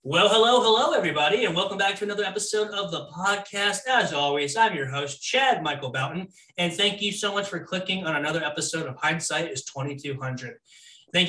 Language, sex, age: English, male, 20-39